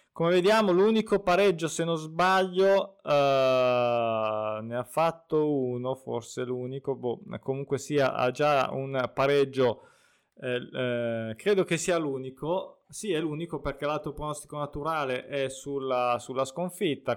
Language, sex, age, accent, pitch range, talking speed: Italian, male, 20-39, native, 130-170 Hz, 135 wpm